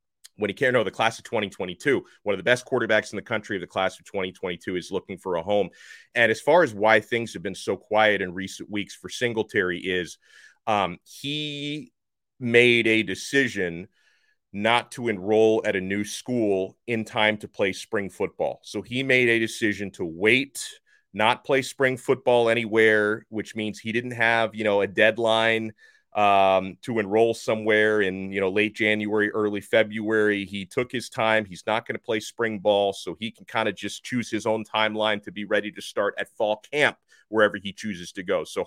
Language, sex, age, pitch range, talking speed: English, male, 30-49, 105-125 Hz, 195 wpm